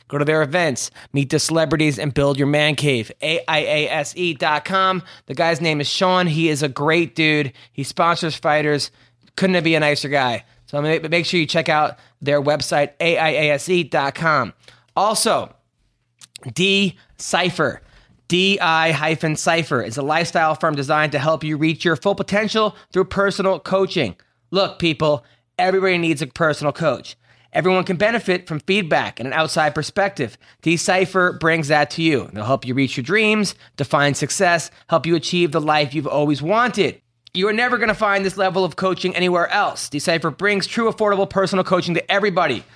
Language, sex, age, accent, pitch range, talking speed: English, male, 20-39, American, 145-185 Hz, 170 wpm